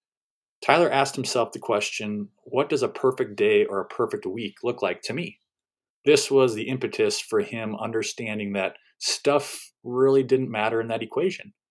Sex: male